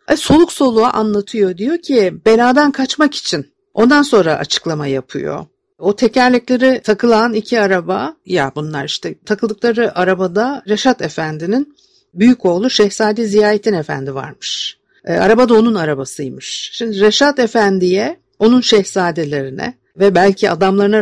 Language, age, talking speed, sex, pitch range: Turkish, 50-69, 120 wpm, female, 165-235 Hz